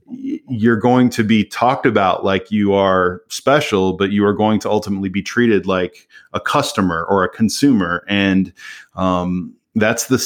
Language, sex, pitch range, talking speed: English, male, 95-115 Hz, 165 wpm